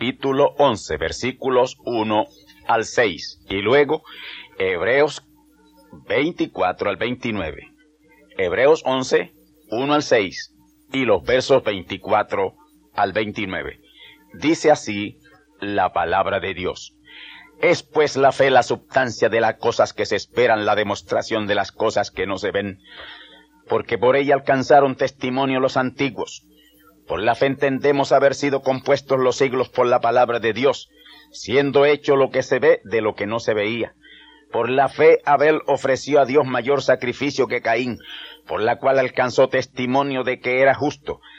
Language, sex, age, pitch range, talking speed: Spanish, male, 50-69, 125-155 Hz, 150 wpm